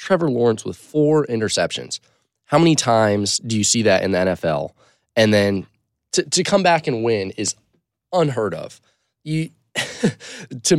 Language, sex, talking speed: English, male, 150 wpm